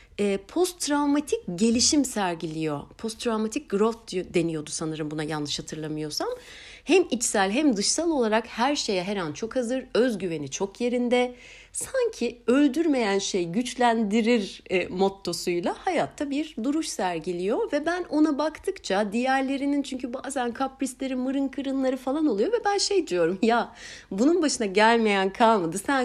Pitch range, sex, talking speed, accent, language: 185-265 Hz, female, 130 wpm, native, Turkish